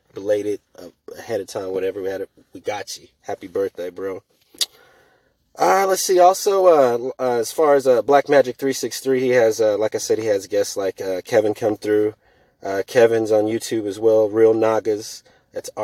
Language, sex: English, male